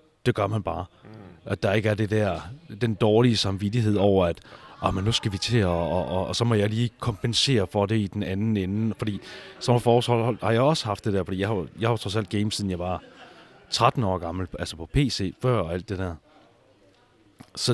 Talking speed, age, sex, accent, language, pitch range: 225 wpm, 30-49, male, native, Danish, 95-120 Hz